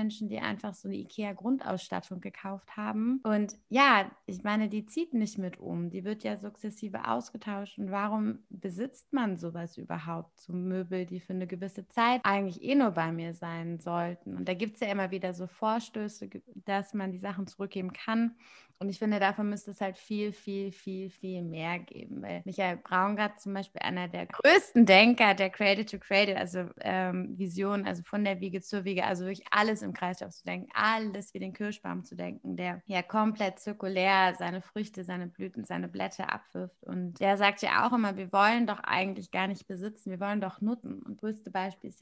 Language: German